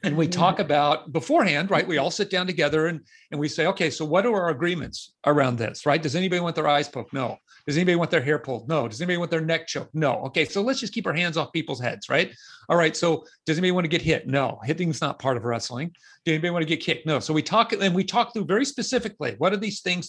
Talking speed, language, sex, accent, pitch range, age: 275 wpm, English, male, American, 145-185 Hz, 50-69